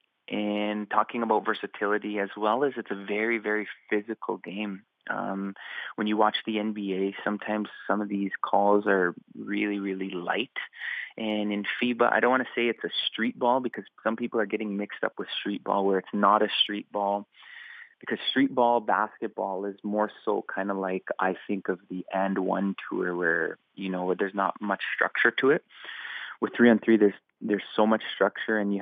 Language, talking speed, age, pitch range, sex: English, 190 wpm, 20-39, 100-110 Hz, male